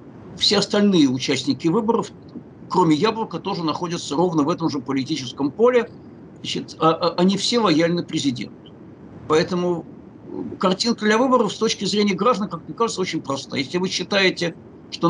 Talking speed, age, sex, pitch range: 140 wpm, 60-79, male, 160-205 Hz